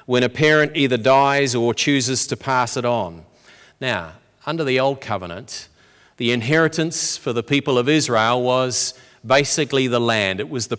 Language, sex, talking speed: English, male, 165 wpm